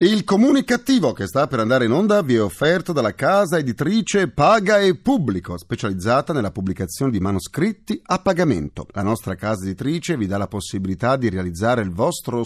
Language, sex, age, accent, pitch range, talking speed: Italian, male, 40-59, native, 105-175 Hz, 180 wpm